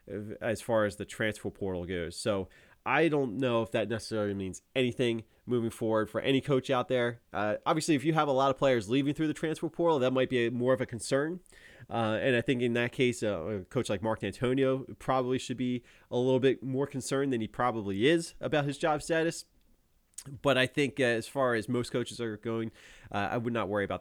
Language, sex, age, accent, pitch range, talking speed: English, male, 30-49, American, 110-140 Hz, 225 wpm